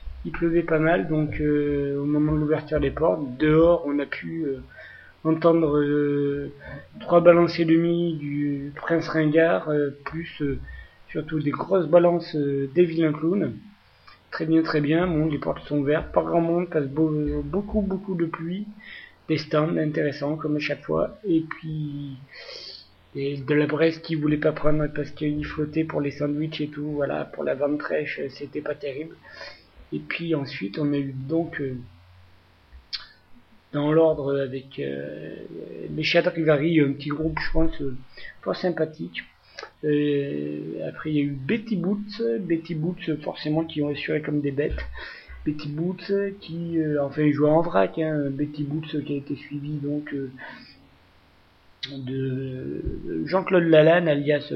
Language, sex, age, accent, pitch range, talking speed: French, male, 30-49, French, 140-160 Hz, 160 wpm